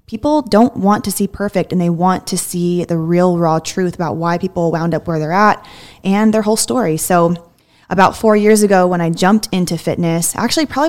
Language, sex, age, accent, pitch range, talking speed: English, female, 20-39, American, 170-200 Hz, 215 wpm